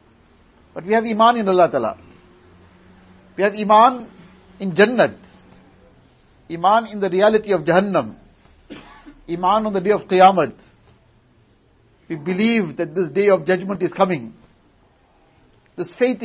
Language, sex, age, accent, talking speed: English, male, 60-79, Indian, 130 wpm